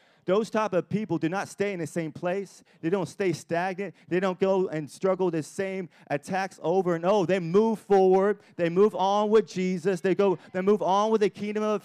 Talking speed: 215 wpm